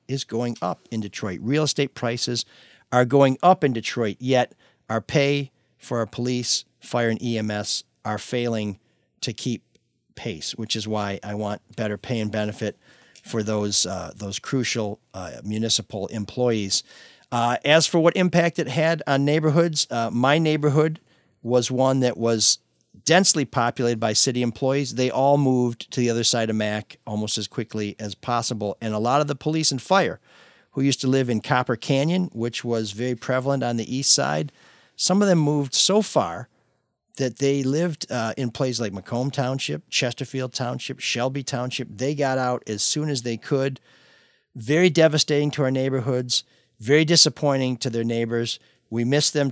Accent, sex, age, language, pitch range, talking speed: American, male, 50-69, English, 110-140 Hz, 170 wpm